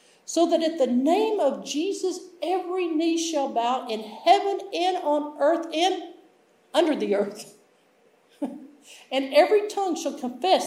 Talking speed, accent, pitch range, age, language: 140 wpm, American, 210-250 Hz, 50-69, English